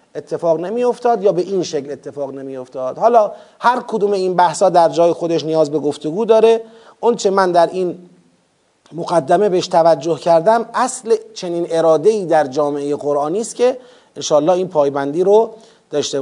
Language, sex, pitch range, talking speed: Persian, male, 160-215 Hz, 160 wpm